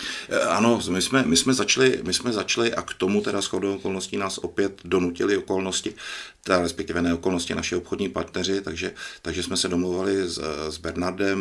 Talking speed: 170 wpm